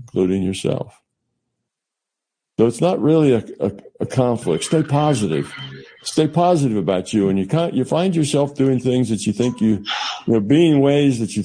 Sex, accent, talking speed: male, American, 180 wpm